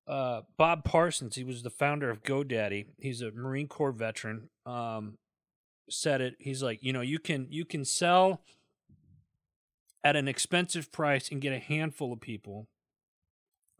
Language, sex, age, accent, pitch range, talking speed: English, male, 40-59, American, 105-140 Hz, 155 wpm